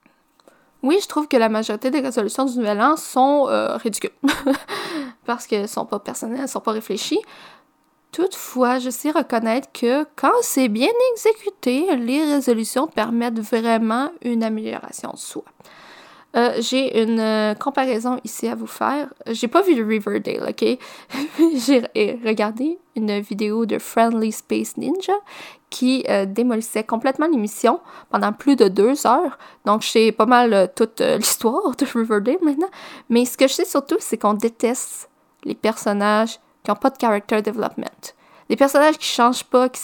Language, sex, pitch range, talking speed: French, female, 225-285 Hz, 165 wpm